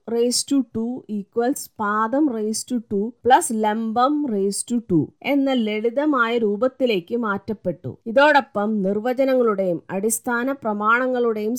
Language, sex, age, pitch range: Malayalam, female, 30-49, 205-265 Hz